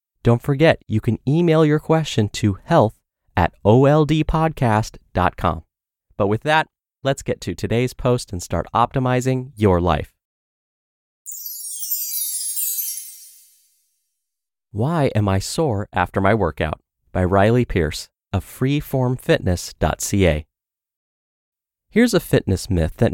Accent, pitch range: American, 95-140 Hz